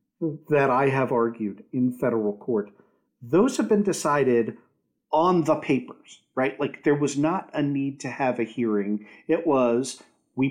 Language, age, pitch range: English, 50-69, 115-150 Hz